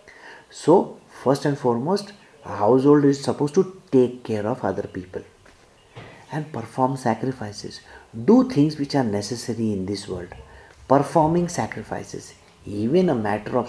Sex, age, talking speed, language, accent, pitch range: male, 50-69, 135 wpm, English, Indian, 110-155 Hz